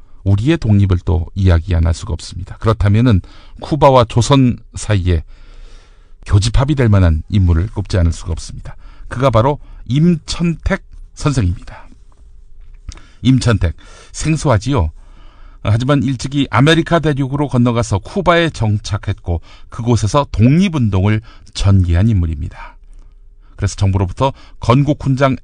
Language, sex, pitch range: Korean, male, 95-140 Hz